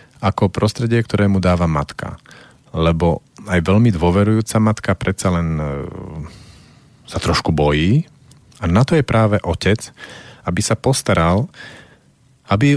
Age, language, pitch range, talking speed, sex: 40-59, Slovak, 85-110 Hz, 125 wpm, male